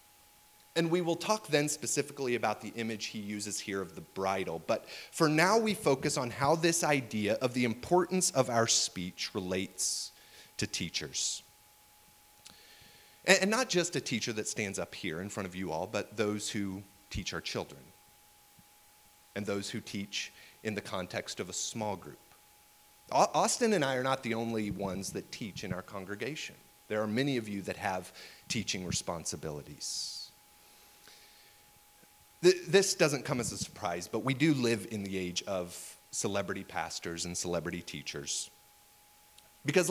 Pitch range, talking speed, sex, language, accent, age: 105-150 Hz, 160 wpm, male, English, American, 30-49